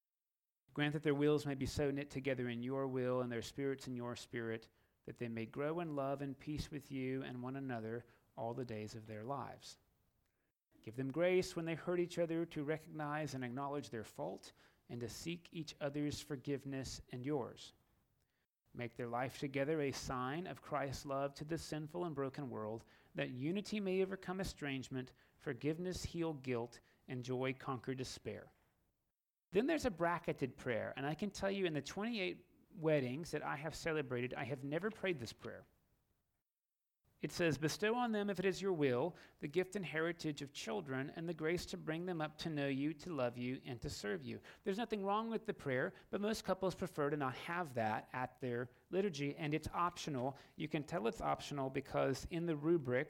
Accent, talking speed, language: American, 195 wpm, English